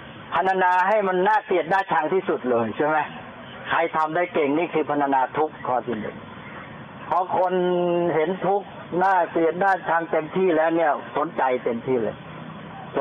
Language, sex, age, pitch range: Thai, male, 60-79, 150-180 Hz